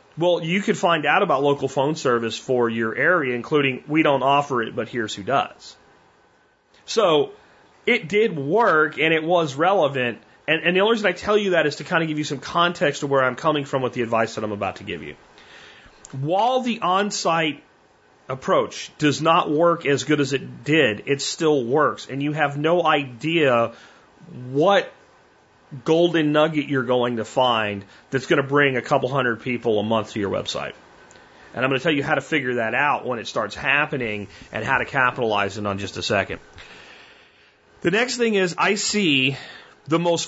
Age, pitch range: 30-49, 125-160 Hz